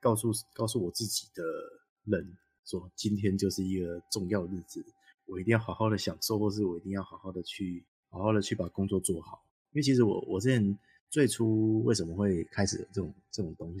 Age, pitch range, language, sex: 20-39, 95-110 Hz, Chinese, male